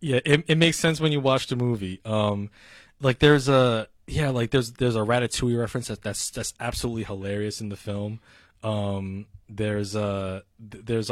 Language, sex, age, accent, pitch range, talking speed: English, male, 20-39, American, 100-120 Hz, 180 wpm